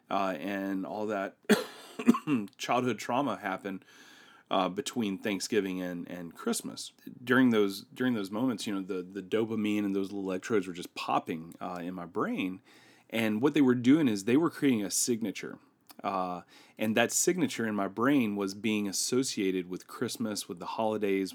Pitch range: 100-125 Hz